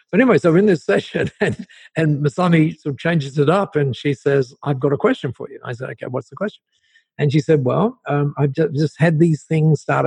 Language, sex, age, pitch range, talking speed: English, male, 50-69, 135-180 Hz, 245 wpm